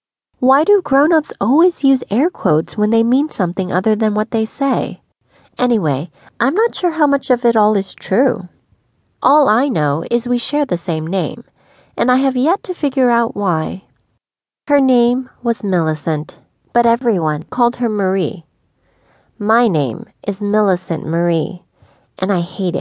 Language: English